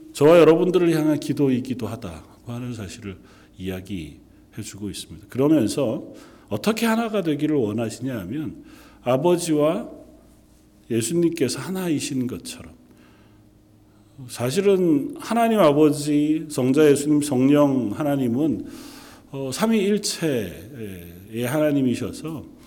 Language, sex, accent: Korean, male, native